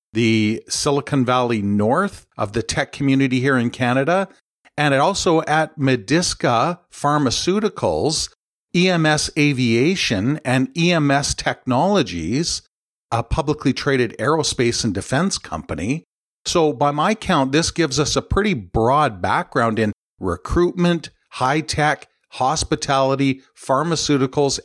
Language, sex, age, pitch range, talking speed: English, male, 50-69, 120-150 Hz, 105 wpm